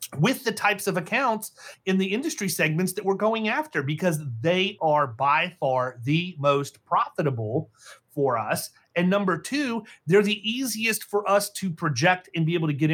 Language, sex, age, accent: English, male, 30-49, American